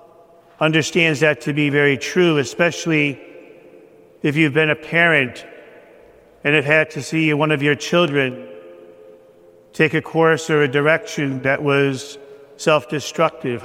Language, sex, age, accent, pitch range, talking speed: English, male, 50-69, American, 150-185 Hz, 130 wpm